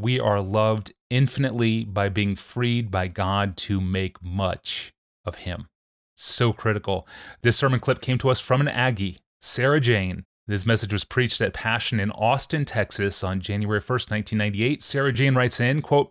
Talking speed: 170 wpm